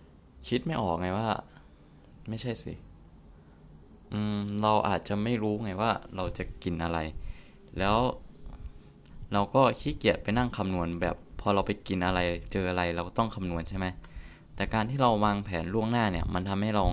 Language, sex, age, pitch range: Thai, male, 20-39, 85-105 Hz